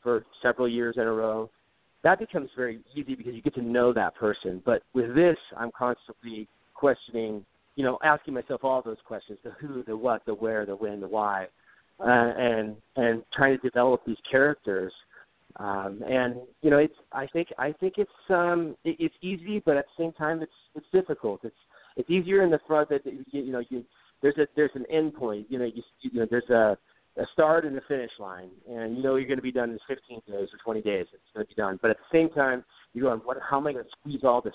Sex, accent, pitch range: male, American, 115-145 Hz